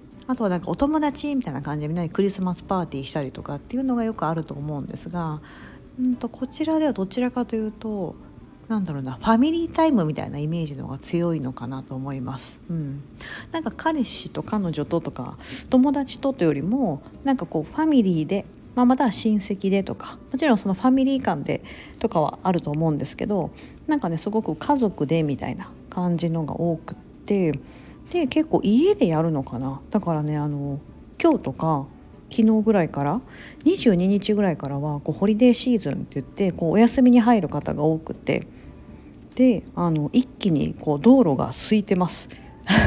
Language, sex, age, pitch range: Japanese, female, 40-59, 150-240 Hz